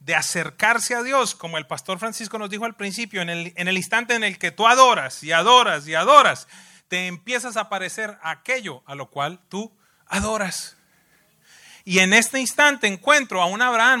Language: English